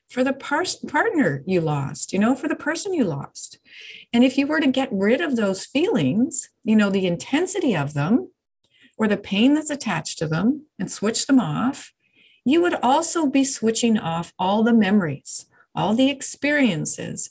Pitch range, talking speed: 200-275 Hz, 175 wpm